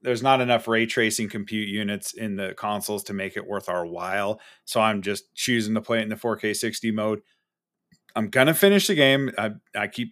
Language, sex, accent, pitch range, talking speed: English, male, American, 110-135 Hz, 220 wpm